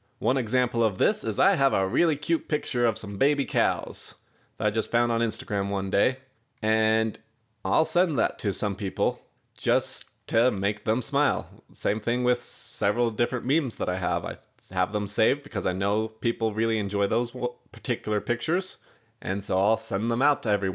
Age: 20-39